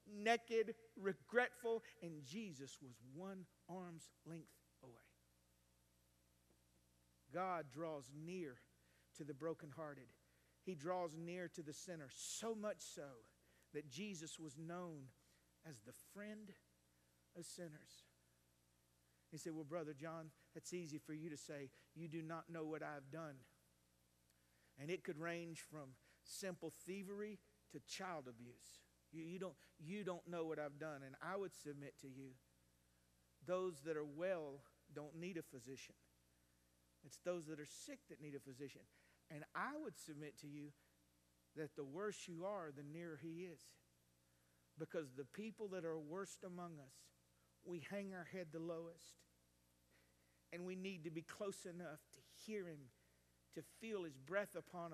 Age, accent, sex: 50-69, American, male